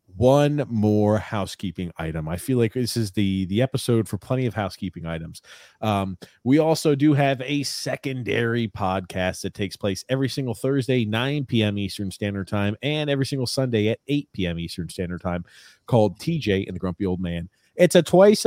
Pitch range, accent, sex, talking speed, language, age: 100-135 Hz, American, male, 180 wpm, English, 30-49